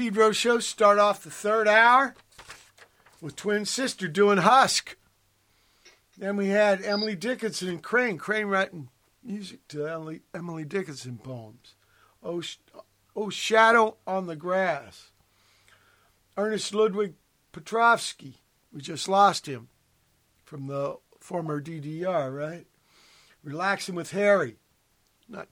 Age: 50-69